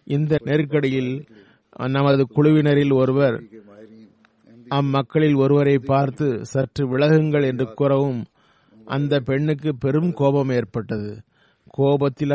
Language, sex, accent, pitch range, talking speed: Tamil, male, native, 125-145 Hz, 85 wpm